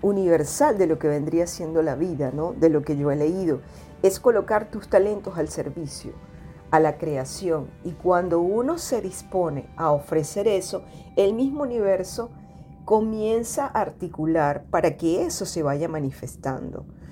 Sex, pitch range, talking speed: female, 155-195 Hz, 155 wpm